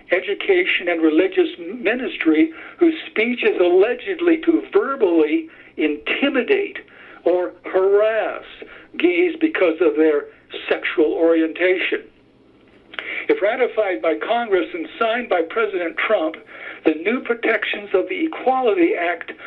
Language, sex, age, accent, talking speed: English, male, 60-79, American, 110 wpm